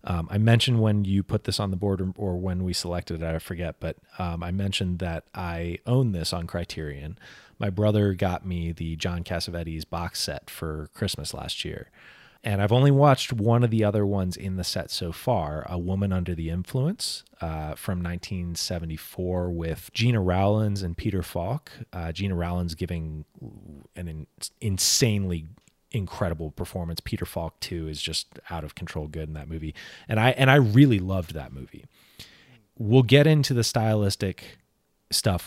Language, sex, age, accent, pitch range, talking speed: English, male, 30-49, American, 85-105 Hz, 175 wpm